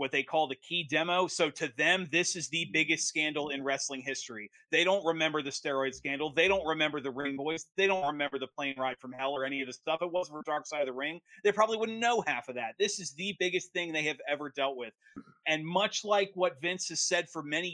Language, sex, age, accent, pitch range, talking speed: English, male, 30-49, American, 145-185 Hz, 255 wpm